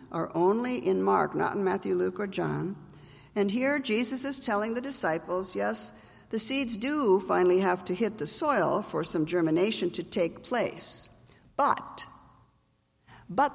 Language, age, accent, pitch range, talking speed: English, 50-69, American, 180-260 Hz, 155 wpm